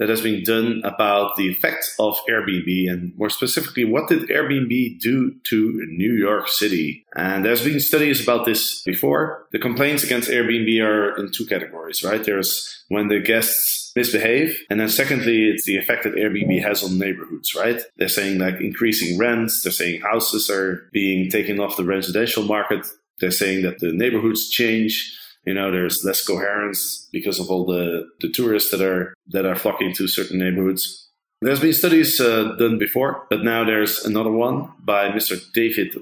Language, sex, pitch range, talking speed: English, male, 95-115 Hz, 180 wpm